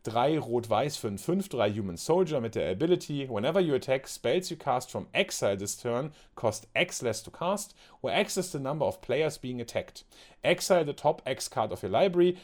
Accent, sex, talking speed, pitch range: German, male, 205 wpm, 115-155 Hz